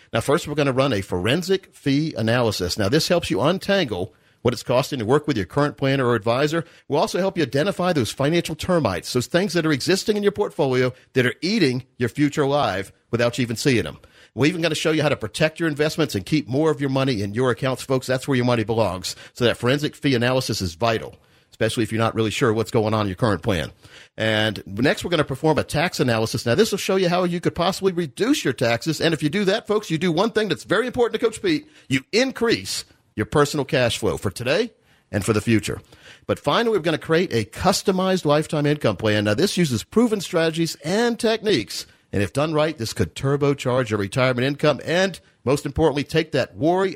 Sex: male